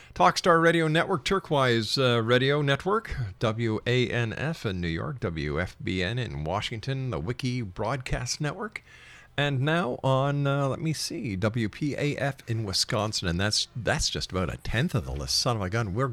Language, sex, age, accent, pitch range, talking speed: English, male, 50-69, American, 105-140 Hz, 160 wpm